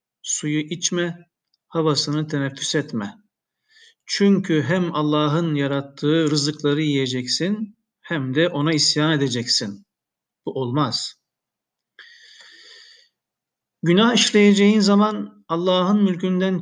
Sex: male